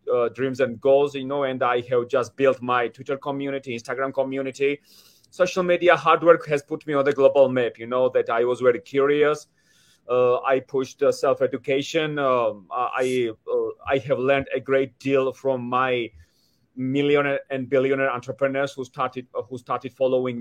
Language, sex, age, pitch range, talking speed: English, male, 30-49, 125-145 Hz, 175 wpm